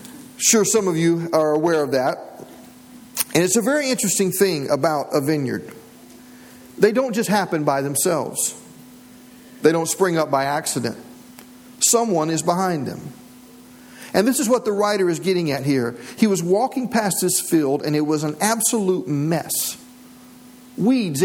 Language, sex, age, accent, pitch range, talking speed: English, male, 50-69, American, 155-245 Hz, 160 wpm